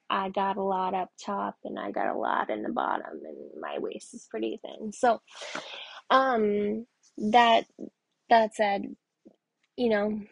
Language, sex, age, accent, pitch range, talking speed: English, female, 20-39, American, 210-250 Hz, 155 wpm